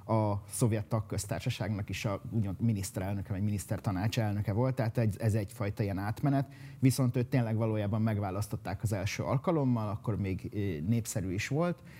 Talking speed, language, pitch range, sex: 140 wpm, Hungarian, 105-125 Hz, male